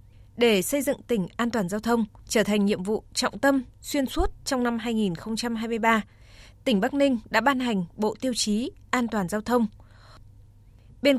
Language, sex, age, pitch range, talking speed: Vietnamese, female, 20-39, 195-255 Hz, 175 wpm